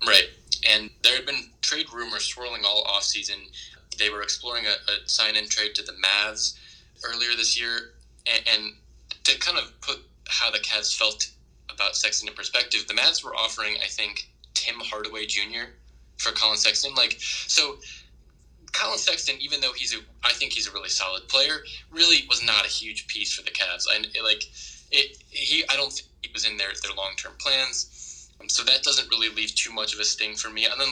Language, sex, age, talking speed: English, male, 20-39, 200 wpm